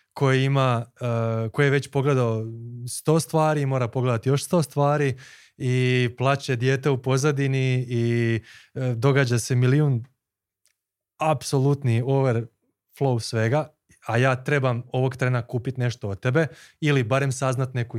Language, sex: Croatian, male